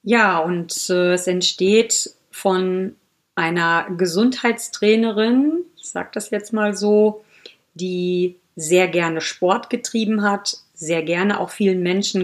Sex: female